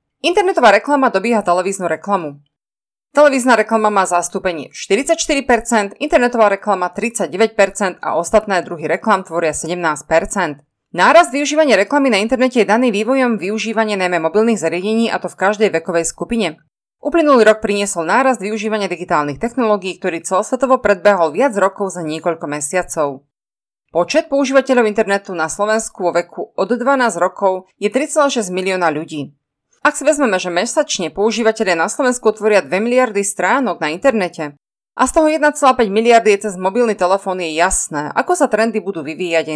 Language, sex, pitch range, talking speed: Slovak, female, 180-245 Hz, 145 wpm